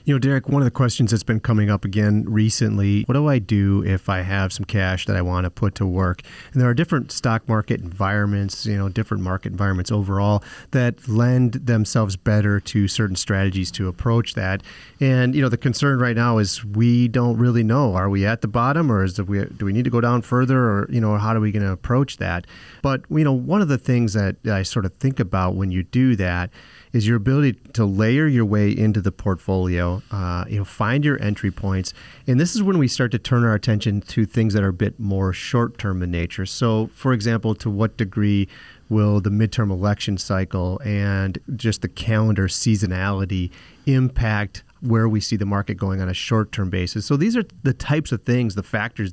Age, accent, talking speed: 30-49, American, 220 wpm